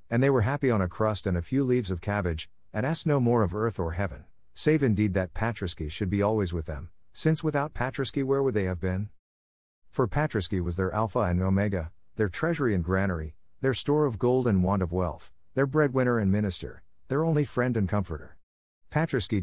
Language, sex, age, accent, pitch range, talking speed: English, male, 50-69, American, 90-120 Hz, 205 wpm